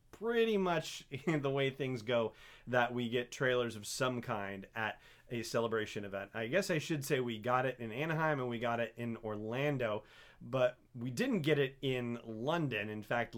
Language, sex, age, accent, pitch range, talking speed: English, male, 30-49, American, 105-135 Hz, 190 wpm